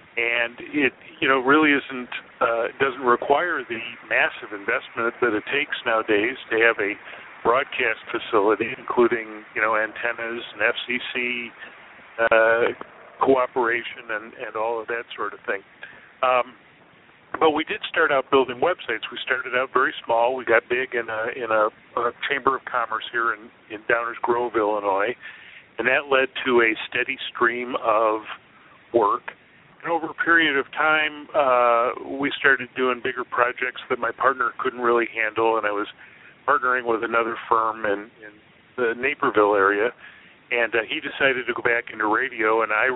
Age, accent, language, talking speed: 50-69, American, English, 160 wpm